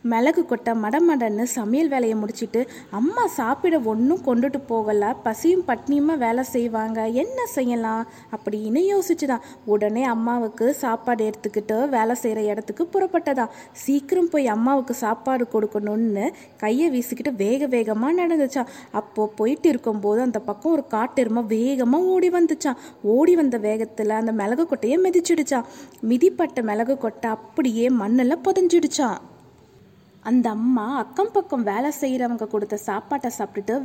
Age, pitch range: 20-39, 225-300 Hz